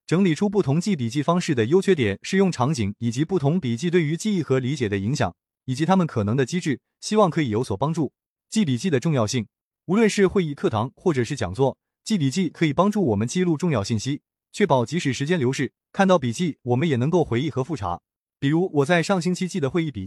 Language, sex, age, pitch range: Chinese, male, 20-39, 130-185 Hz